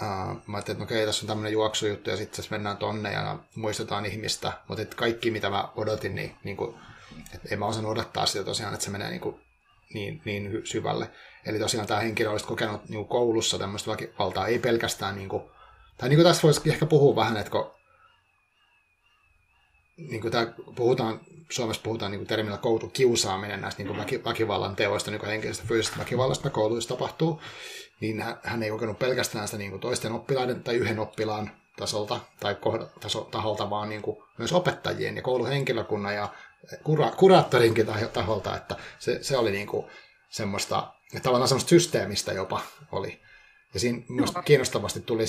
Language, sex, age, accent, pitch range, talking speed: Finnish, male, 30-49, native, 105-120 Hz, 160 wpm